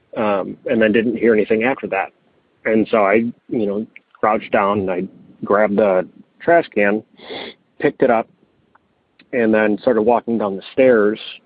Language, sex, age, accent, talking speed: English, male, 30-49, American, 160 wpm